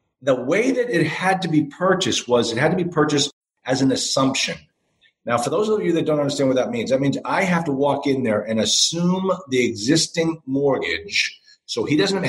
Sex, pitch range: male, 125-165 Hz